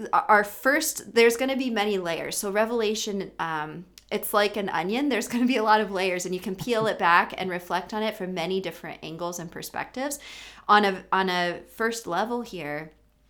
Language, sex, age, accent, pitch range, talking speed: English, female, 30-49, American, 170-210 Hz, 210 wpm